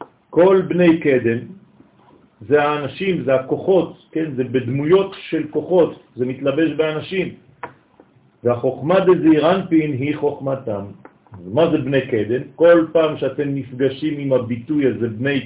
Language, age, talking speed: French, 50-69, 125 wpm